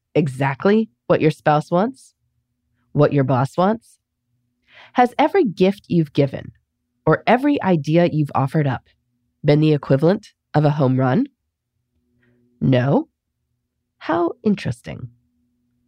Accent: American